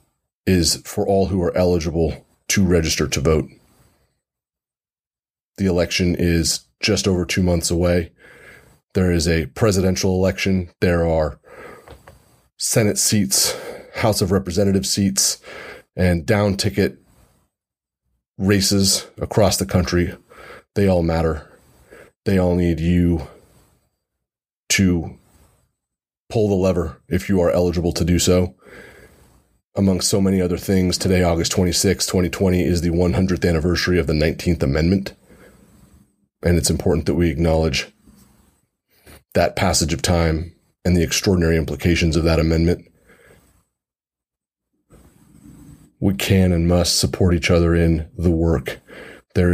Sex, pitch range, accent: male, 80-95 Hz, American